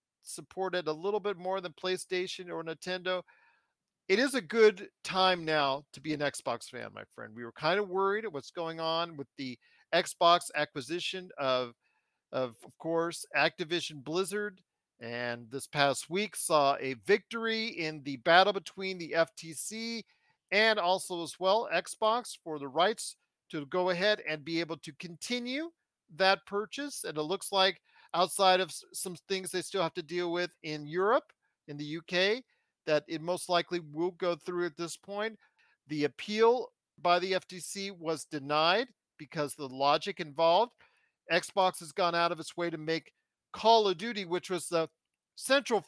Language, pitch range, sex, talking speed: English, 160-205 Hz, male, 165 wpm